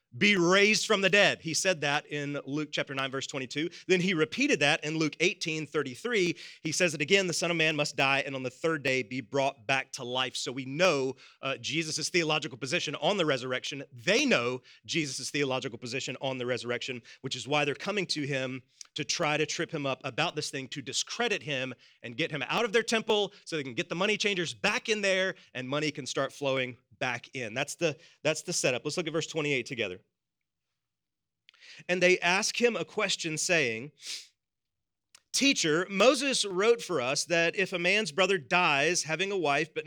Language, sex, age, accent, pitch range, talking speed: English, male, 30-49, American, 135-180 Hz, 205 wpm